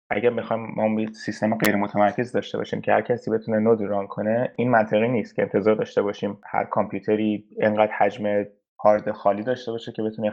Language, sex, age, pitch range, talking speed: Persian, male, 20-39, 105-135 Hz, 185 wpm